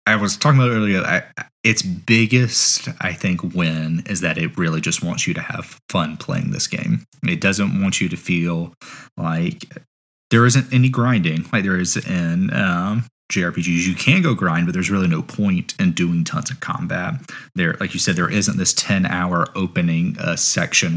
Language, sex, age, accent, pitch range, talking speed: English, male, 30-49, American, 85-130 Hz, 190 wpm